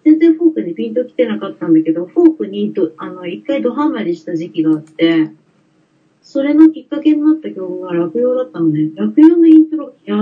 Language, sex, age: Japanese, female, 40-59